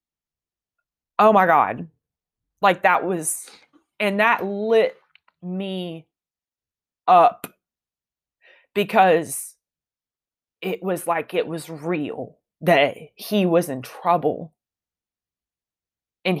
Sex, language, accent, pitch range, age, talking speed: female, English, American, 175-215 Hz, 20-39, 90 wpm